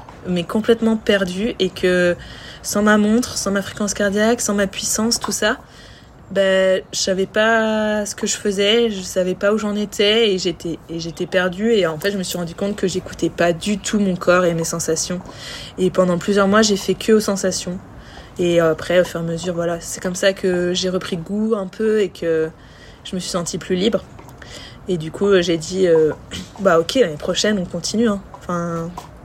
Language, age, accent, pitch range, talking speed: French, 20-39, French, 175-205 Hz, 215 wpm